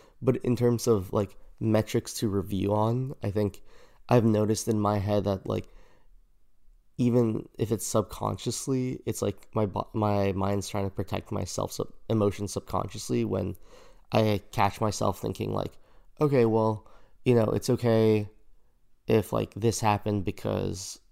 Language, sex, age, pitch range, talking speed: English, male, 20-39, 100-115 Hz, 145 wpm